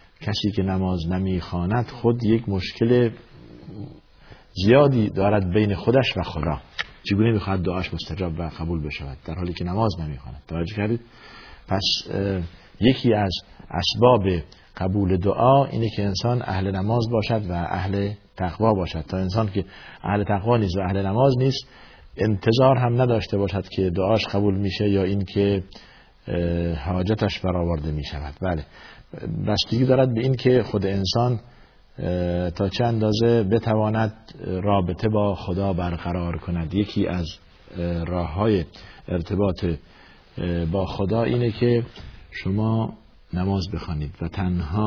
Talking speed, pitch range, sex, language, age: 135 wpm, 90-110 Hz, male, Persian, 50-69